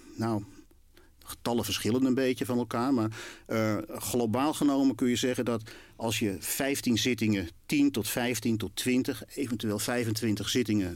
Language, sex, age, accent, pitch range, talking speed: Dutch, male, 50-69, Dutch, 100-125 Hz, 150 wpm